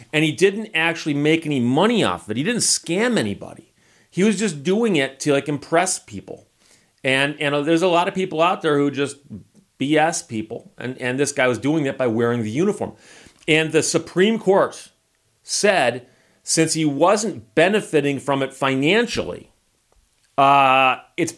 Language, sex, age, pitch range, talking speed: English, male, 40-59, 130-175 Hz, 170 wpm